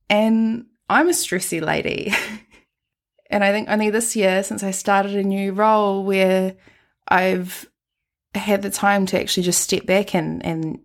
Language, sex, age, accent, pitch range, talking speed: English, female, 20-39, Australian, 170-205 Hz, 160 wpm